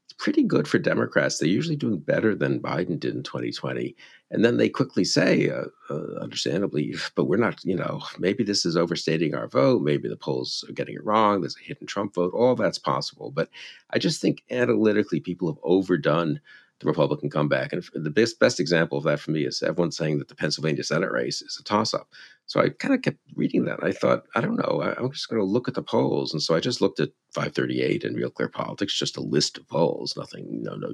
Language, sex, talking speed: English, male, 230 wpm